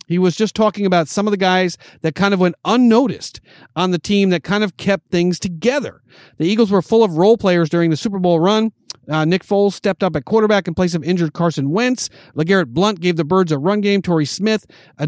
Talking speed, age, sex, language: 235 wpm, 40-59, male, English